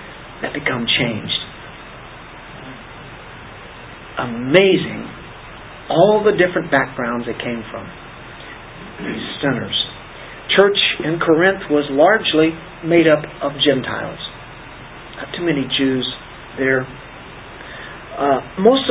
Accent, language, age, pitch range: American, English, 50-69, 135-175 Hz